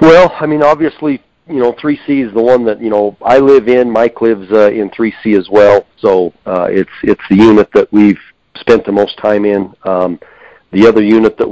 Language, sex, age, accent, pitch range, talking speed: English, male, 40-59, American, 95-110 Hz, 215 wpm